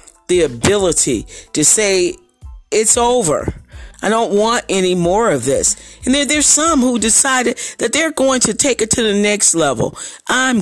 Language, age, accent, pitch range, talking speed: English, 40-59, American, 145-220 Hz, 165 wpm